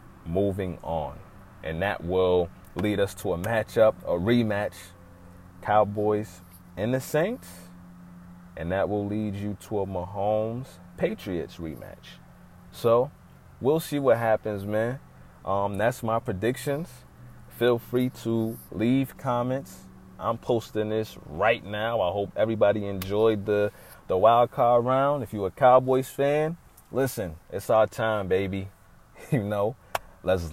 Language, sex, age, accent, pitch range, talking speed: English, male, 30-49, American, 95-115 Hz, 135 wpm